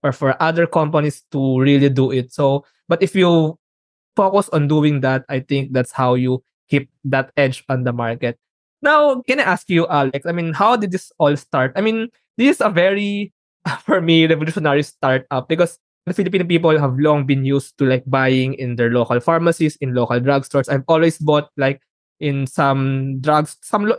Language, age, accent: English, 20-39, Filipino